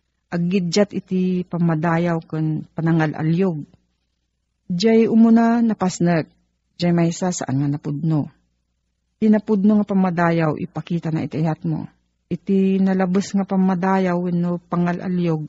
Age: 40-59